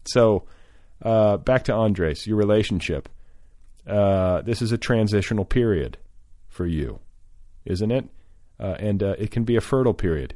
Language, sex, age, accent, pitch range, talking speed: English, male, 40-59, American, 85-105 Hz, 150 wpm